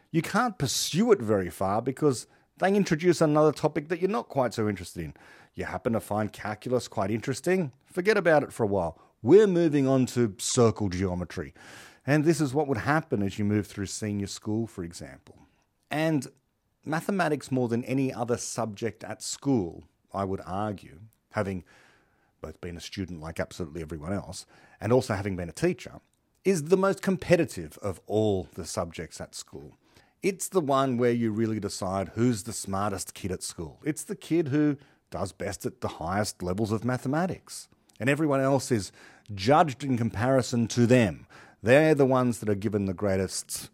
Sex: male